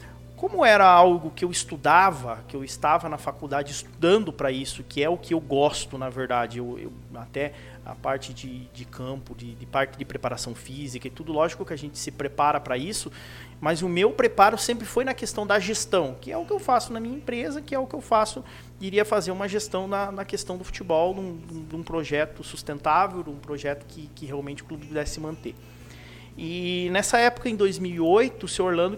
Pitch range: 140-195 Hz